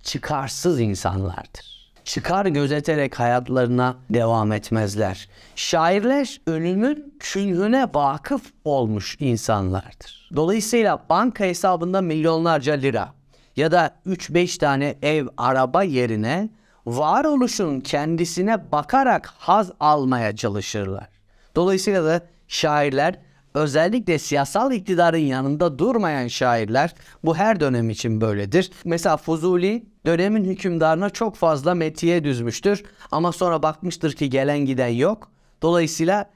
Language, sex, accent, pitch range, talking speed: Turkish, male, native, 125-200 Hz, 100 wpm